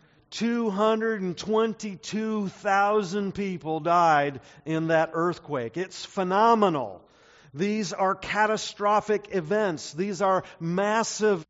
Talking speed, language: 80 wpm, English